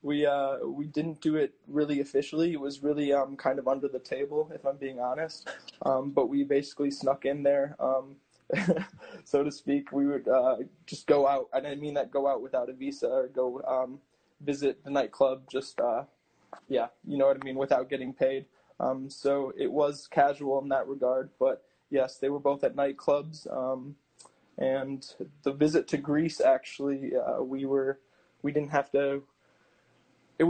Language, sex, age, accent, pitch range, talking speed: English, male, 20-39, American, 135-145 Hz, 185 wpm